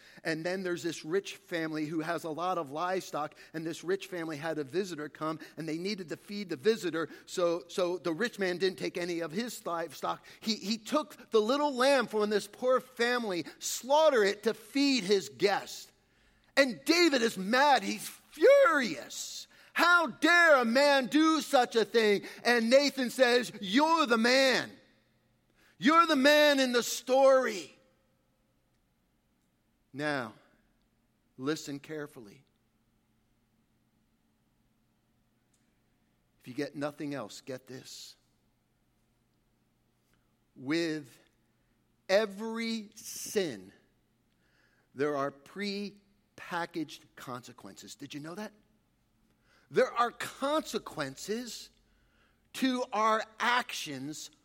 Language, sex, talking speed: English, male, 120 wpm